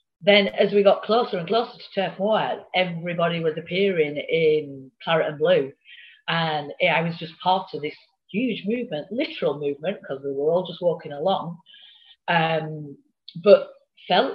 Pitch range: 155-210 Hz